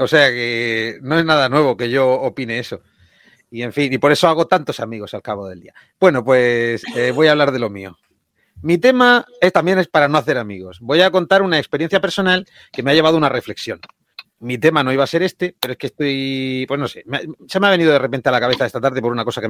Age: 30-49